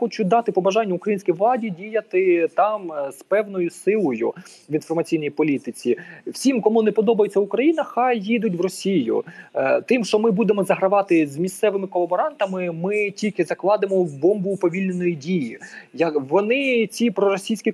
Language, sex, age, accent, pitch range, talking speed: Ukrainian, male, 20-39, native, 165-220 Hz, 130 wpm